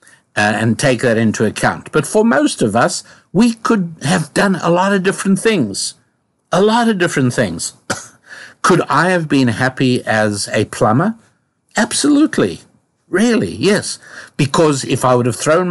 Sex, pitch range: male, 115-150 Hz